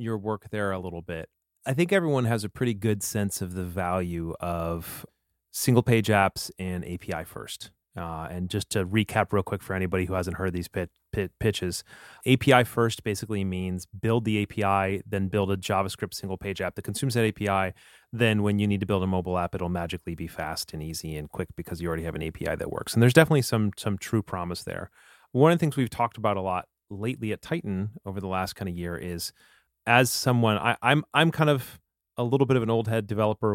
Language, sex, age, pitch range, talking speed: English, male, 30-49, 90-110 Hz, 220 wpm